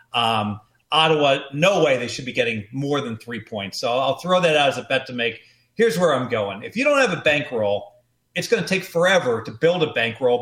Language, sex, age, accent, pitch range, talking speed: English, male, 40-59, American, 120-165 Hz, 235 wpm